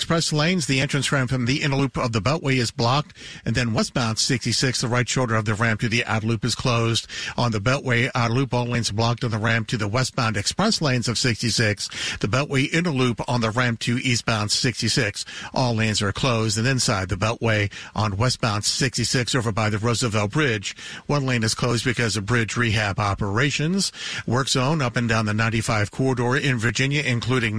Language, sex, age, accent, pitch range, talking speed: English, male, 50-69, American, 115-140 Hz, 205 wpm